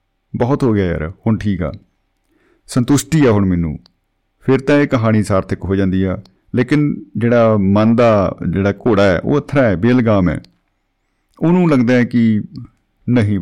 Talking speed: 160 wpm